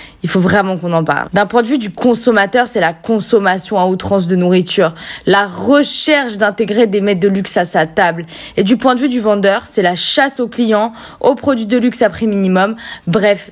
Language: French